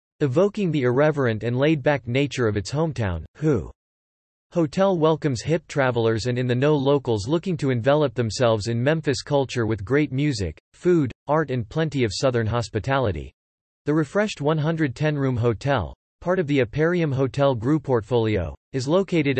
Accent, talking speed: American, 145 wpm